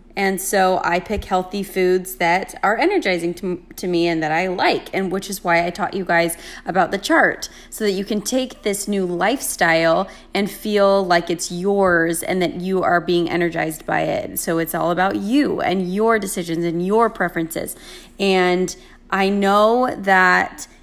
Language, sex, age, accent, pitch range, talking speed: English, female, 20-39, American, 180-205 Hz, 180 wpm